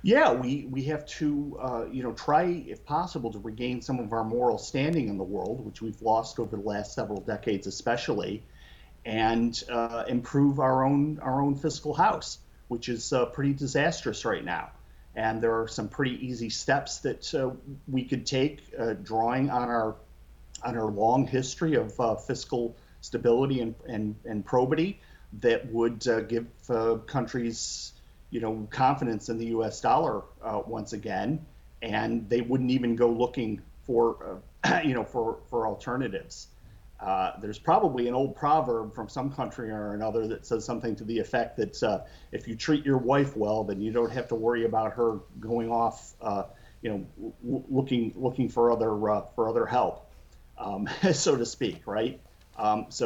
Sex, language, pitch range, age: male, English, 110-130 Hz, 40-59